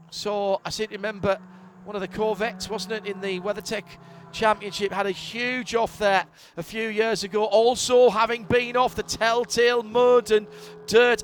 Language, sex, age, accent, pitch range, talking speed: English, male, 40-59, British, 205-240 Hz, 175 wpm